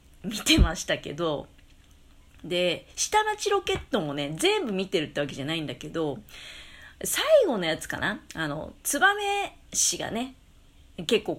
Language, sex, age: Japanese, female, 40-59